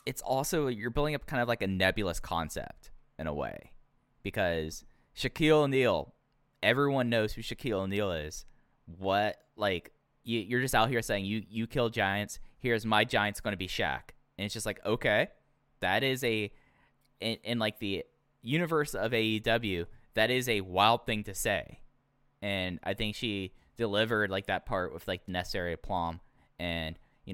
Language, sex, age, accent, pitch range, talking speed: English, male, 10-29, American, 95-115 Hz, 170 wpm